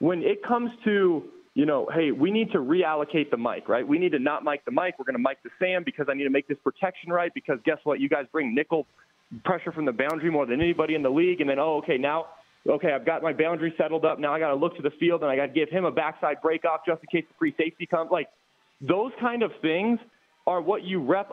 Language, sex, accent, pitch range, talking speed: English, male, American, 150-205 Hz, 275 wpm